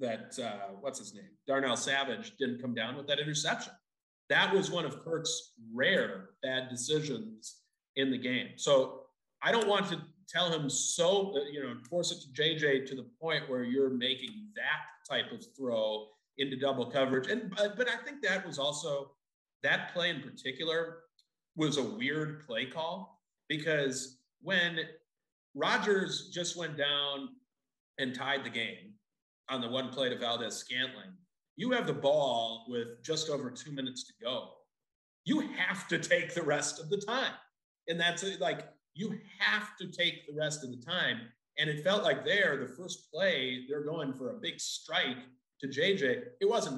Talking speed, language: 170 wpm, English